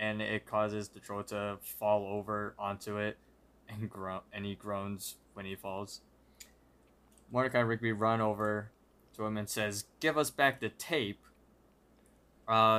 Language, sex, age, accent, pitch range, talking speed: English, male, 20-39, American, 105-140 Hz, 155 wpm